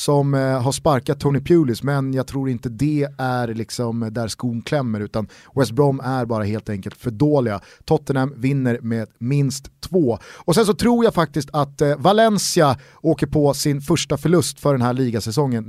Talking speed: 175 wpm